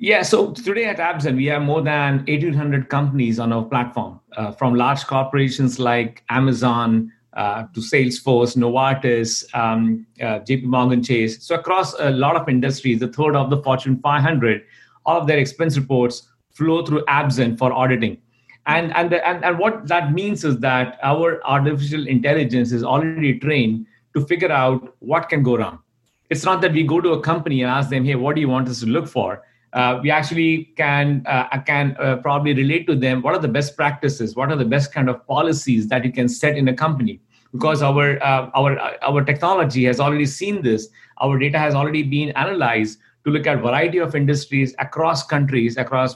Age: 50-69